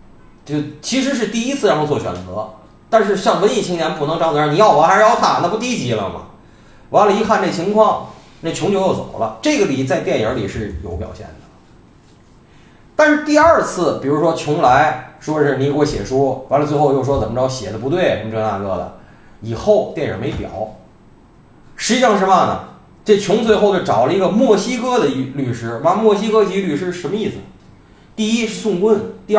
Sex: male